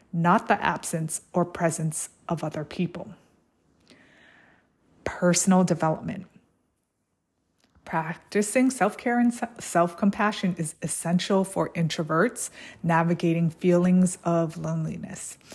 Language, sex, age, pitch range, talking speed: English, female, 20-39, 165-200 Hz, 85 wpm